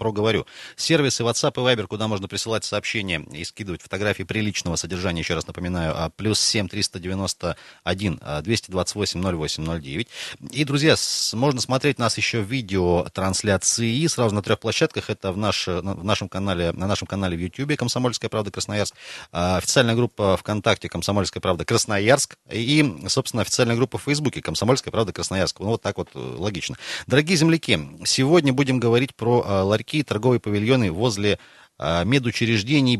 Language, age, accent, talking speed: Russian, 30-49, native, 140 wpm